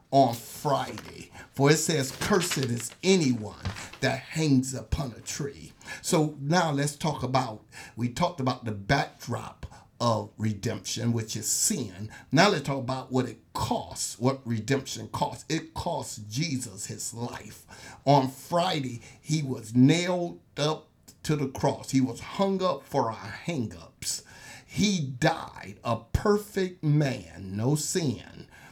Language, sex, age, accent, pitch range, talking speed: English, male, 50-69, American, 120-155 Hz, 140 wpm